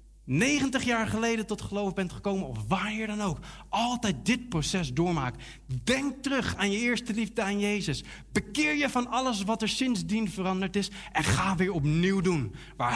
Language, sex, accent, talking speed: Dutch, male, Dutch, 180 wpm